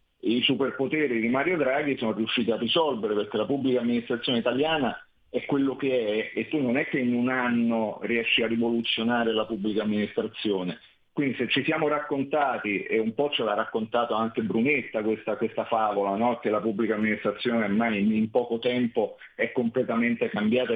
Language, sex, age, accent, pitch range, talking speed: Italian, male, 40-59, native, 110-125 Hz, 170 wpm